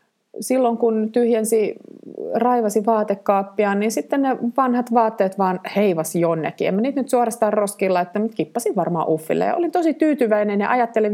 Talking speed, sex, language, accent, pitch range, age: 145 wpm, female, Finnish, native, 185-230 Hz, 30-49